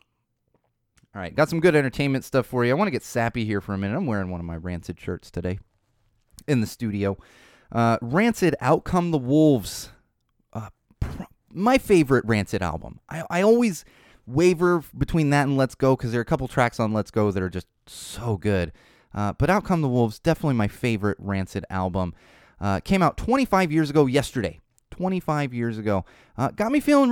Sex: male